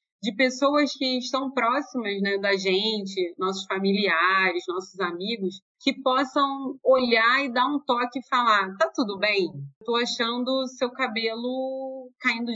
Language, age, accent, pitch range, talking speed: Portuguese, 30-49, Brazilian, 195-240 Hz, 140 wpm